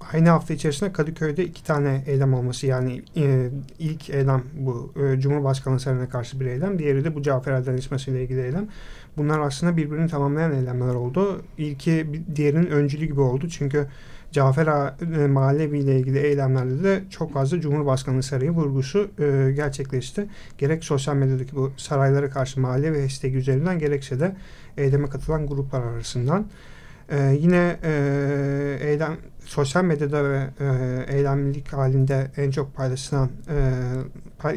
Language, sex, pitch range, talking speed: Turkish, male, 135-160 Hz, 150 wpm